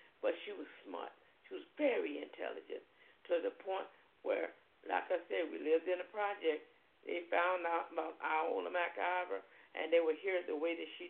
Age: 50-69